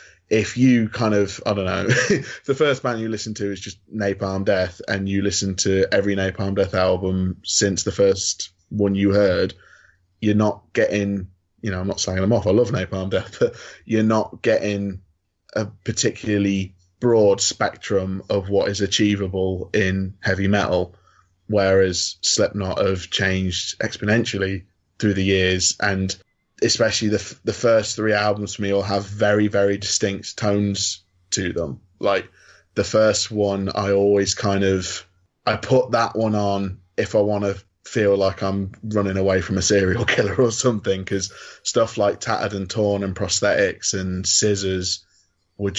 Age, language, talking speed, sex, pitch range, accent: 20-39, English, 165 wpm, male, 95-105 Hz, British